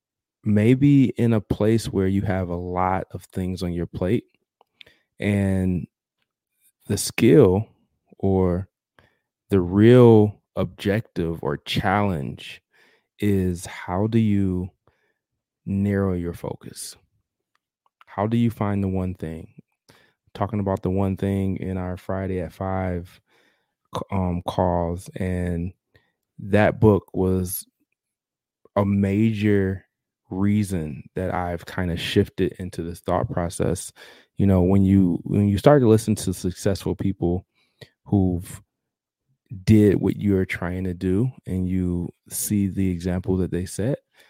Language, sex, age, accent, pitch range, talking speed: English, male, 20-39, American, 90-105 Hz, 125 wpm